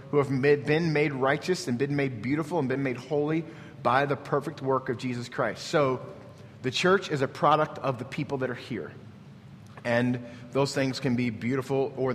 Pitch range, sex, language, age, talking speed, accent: 120-145 Hz, male, English, 30-49, 200 wpm, American